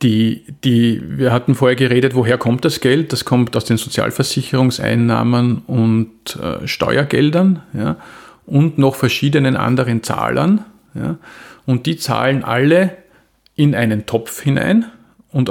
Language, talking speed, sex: German, 115 wpm, male